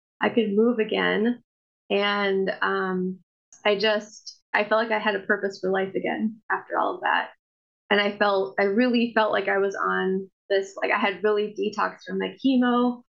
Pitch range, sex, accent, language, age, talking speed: 195-225 Hz, female, American, English, 20-39, 190 wpm